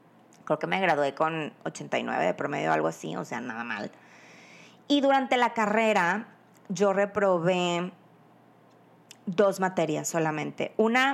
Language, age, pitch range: Spanish, 20-39, 175-220 Hz